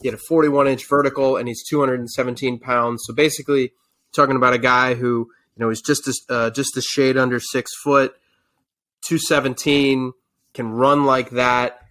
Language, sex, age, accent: English, male, 20-39, American